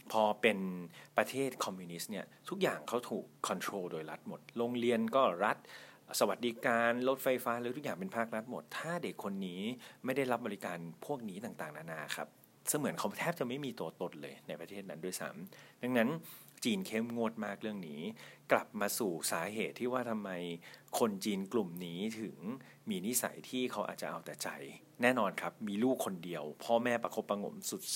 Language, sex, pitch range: English, male, 100-130 Hz